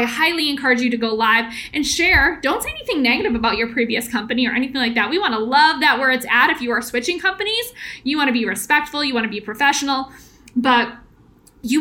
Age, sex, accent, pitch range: 10-29, female, American, 235-285 Hz